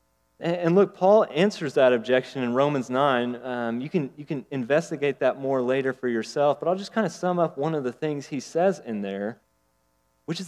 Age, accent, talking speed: 30-49, American, 210 wpm